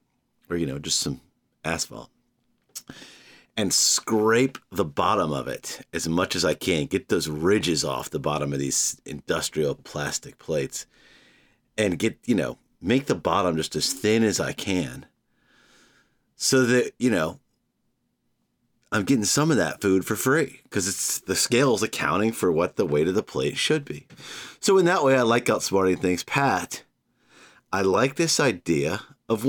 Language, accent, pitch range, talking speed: English, American, 95-130 Hz, 165 wpm